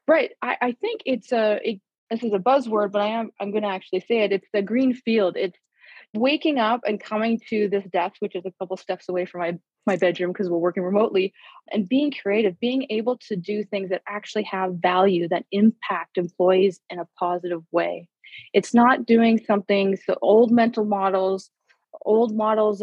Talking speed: 195 wpm